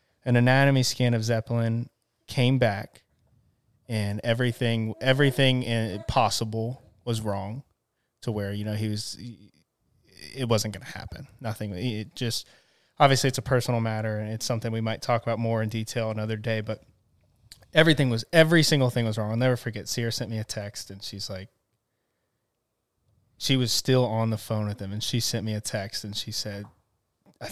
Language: English